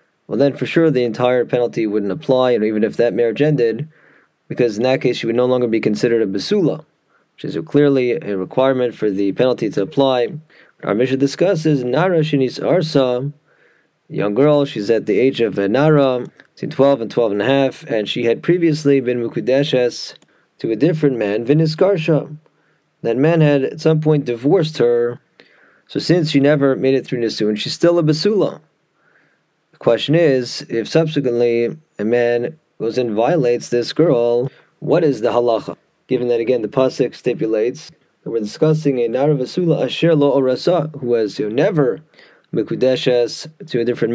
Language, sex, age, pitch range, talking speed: English, male, 20-39, 120-150 Hz, 175 wpm